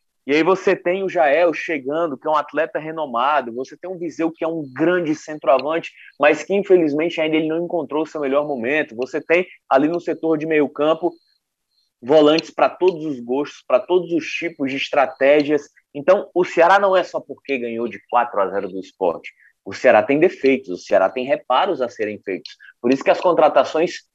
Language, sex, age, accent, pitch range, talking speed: Portuguese, male, 20-39, Brazilian, 145-185 Hz, 200 wpm